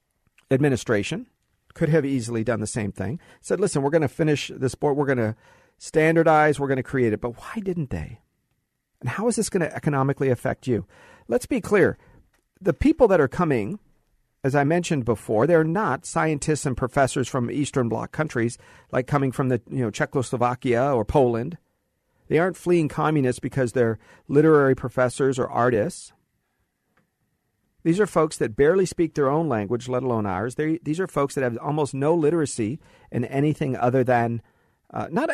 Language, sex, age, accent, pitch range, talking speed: English, male, 50-69, American, 125-165 Hz, 175 wpm